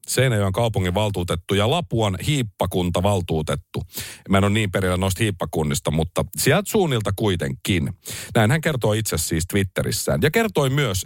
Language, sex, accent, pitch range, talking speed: Finnish, male, native, 95-150 Hz, 145 wpm